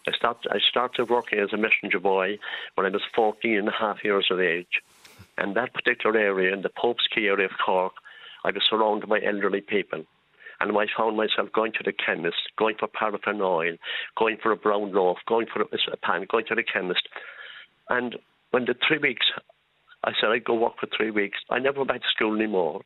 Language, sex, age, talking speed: English, male, 60-79, 215 wpm